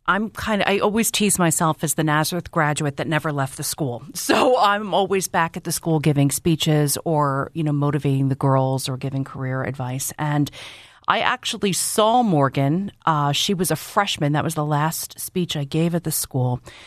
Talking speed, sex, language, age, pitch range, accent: 195 wpm, female, English, 40-59, 135-165 Hz, American